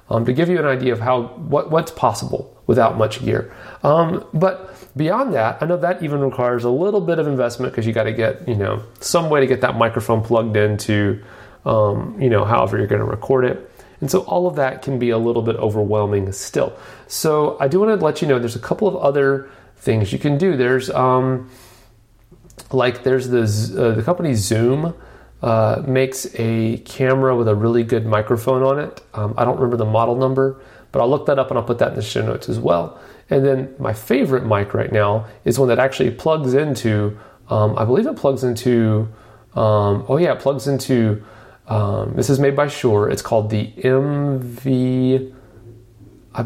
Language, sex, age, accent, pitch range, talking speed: English, male, 30-49, American, 110-135 Hz, 205 wpm